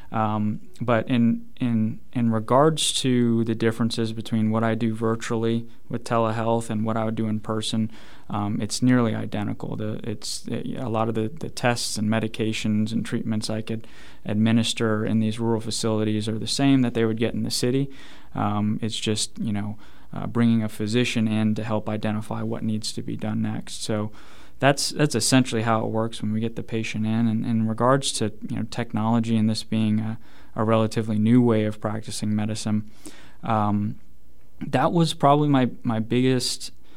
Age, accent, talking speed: 20-39, American, 185 wpm